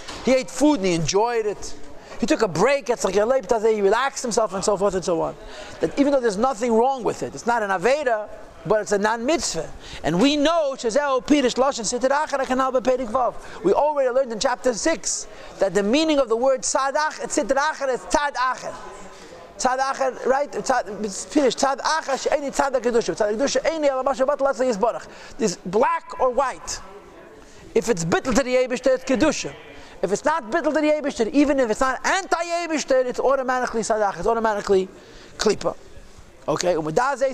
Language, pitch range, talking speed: English, 210-270 Hz, 150 wpm